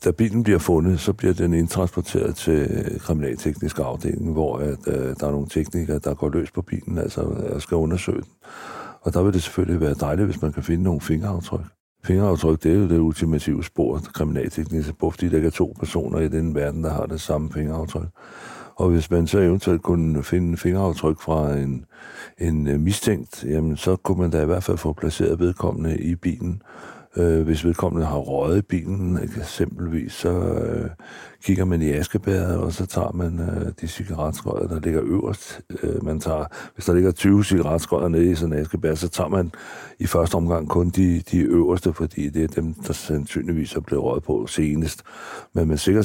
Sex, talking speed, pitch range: male, 185 wpm, 80-90 Hz